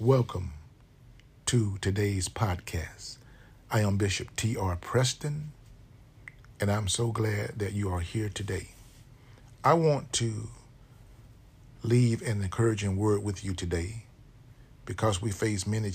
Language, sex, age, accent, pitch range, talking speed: English, male, 50-69, American, 105-125 Hz, 120 wpm